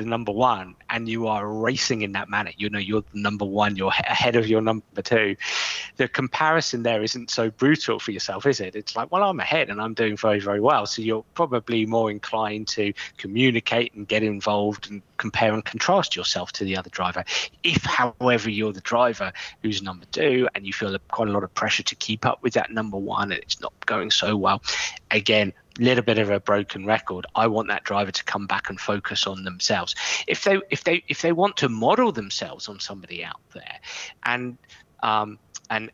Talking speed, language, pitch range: 205 wpm, Arabic, 105-125 Hz